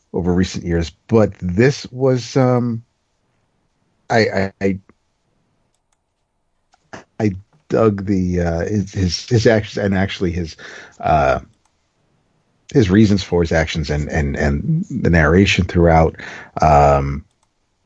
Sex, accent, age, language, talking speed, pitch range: male, American, 50-69, English, 110 wpm, 85-110 Hz